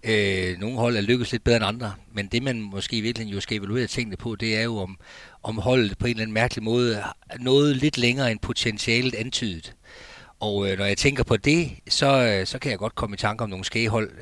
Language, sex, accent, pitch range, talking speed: Danish, male, native, 100-120 Hz, 235 wpm